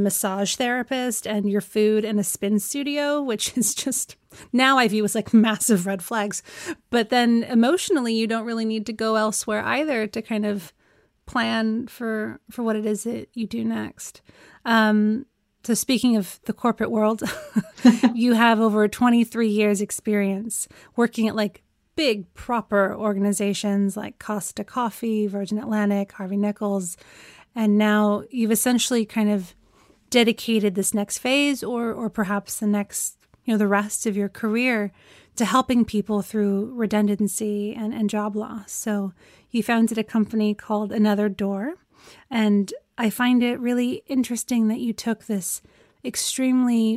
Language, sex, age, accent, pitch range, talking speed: English, female, 30-49, American, 205-235 Hz, 155 wpm